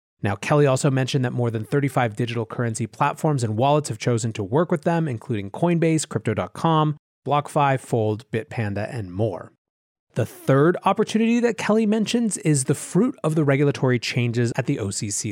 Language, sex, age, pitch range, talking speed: English, male, 30-49, 115-155 Hz, 170 wpm